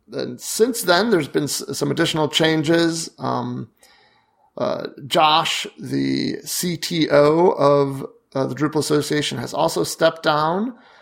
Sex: male